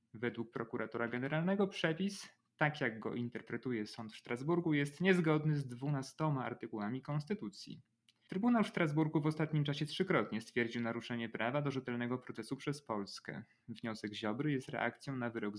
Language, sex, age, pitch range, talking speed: Polish, male, 30-49, 115-150 Hz, 145 wpm